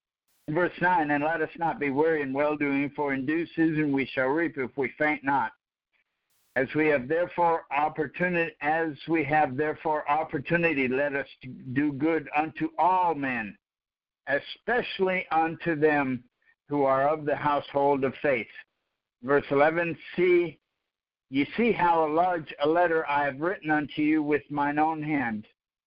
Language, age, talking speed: English, 60-79, 150 wpm